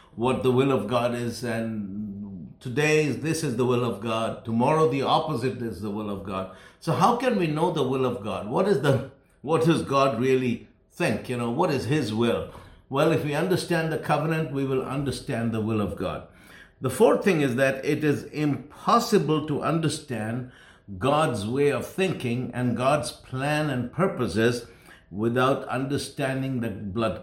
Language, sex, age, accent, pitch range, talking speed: English, male, 60-79, Indian, 115-150 Hz, 180 wpm